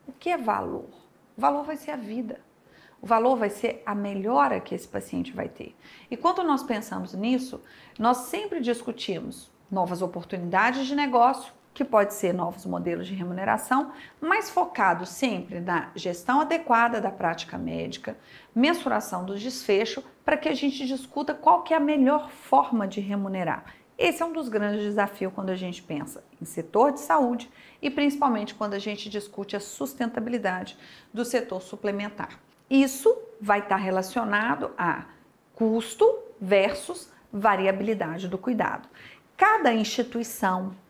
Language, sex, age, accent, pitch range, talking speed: Portuguese, female, 40-59, Brazilian, 200-275 Hz, 150 wpm